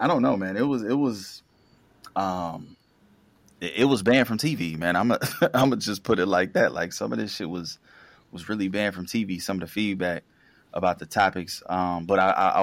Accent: American